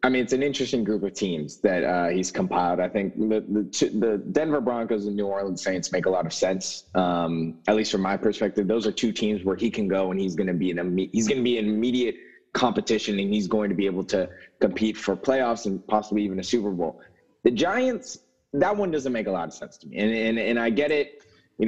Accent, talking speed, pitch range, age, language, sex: American, 250 wpm, 100-140 Hz, 20-39, English, male